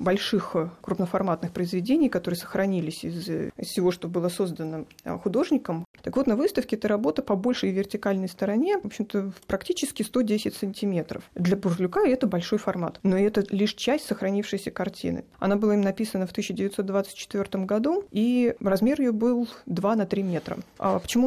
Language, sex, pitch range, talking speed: Russian, female, 180-215 Hz, 150 wpm